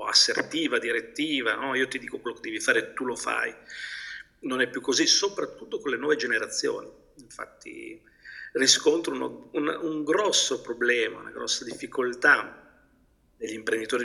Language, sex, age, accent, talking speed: Italian, male, 40-59, native, 145 wpm